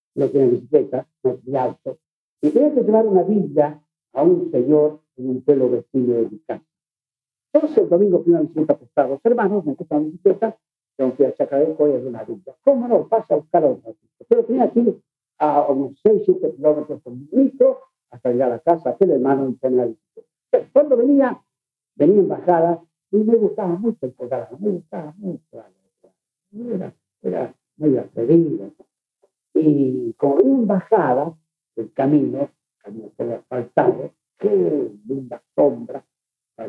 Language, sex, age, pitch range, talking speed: Spanish, male, 60-79, 130-220 Hz, 175 wpm